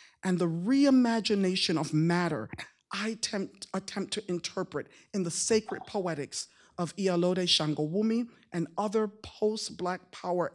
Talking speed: 125 wpm